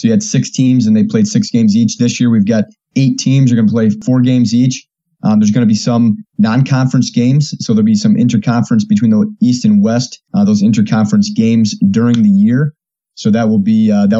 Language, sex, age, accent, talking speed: English, male, 30-49, American, 225 wpm